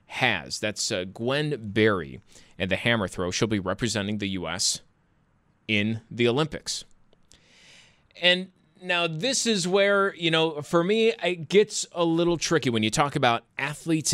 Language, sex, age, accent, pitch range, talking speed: English, male, 30-49, American, 120-175 Hz, 155 wpm